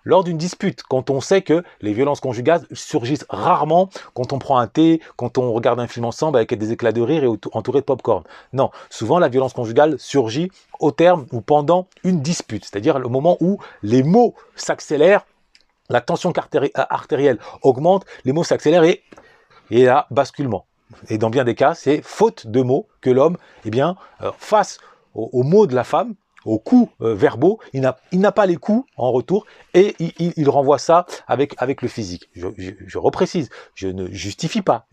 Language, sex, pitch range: French, male, 125-175 Hz